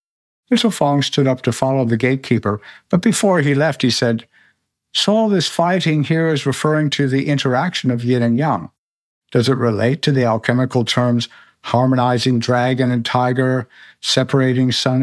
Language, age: English, 60-79